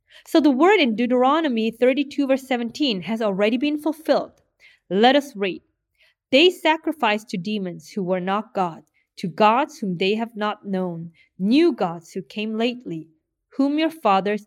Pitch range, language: 190-275 Hz, English